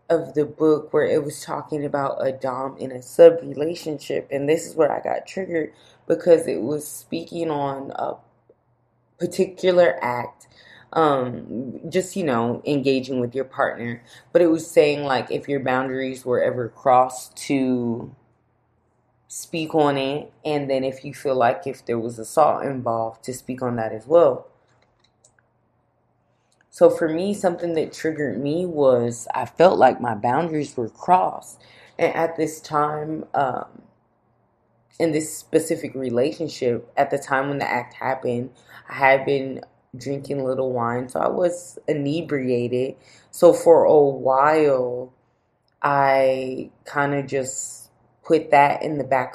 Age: 20-39